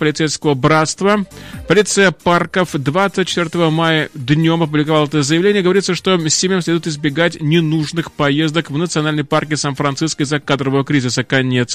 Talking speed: 130 wpm